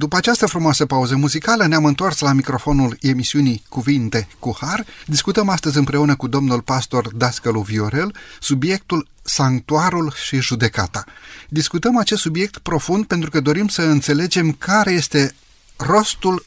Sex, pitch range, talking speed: male, 130-180 Hz, 135 wpm